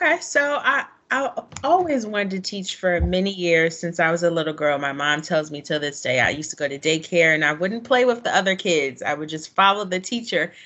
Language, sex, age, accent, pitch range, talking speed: English, female, 20-39, American, 160-200 Hz, 250 wpm